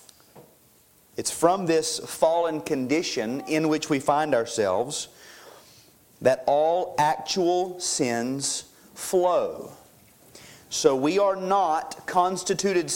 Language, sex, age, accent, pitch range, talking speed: English, male, 40-59, American, 150-200 Hz, 95 wpm